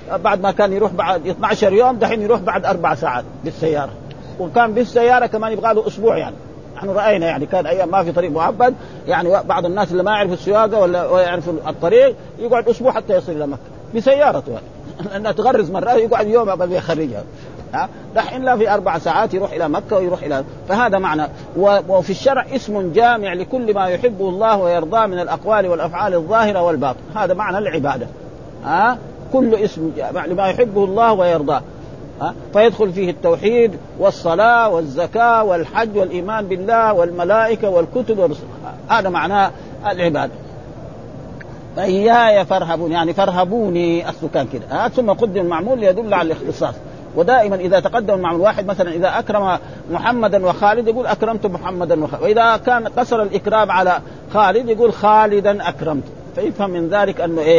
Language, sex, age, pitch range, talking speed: Arabic, male, 50-69, 170-220 Hz, 155 wpm